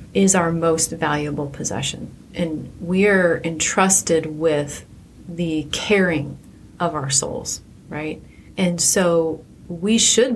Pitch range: 155-185 Hz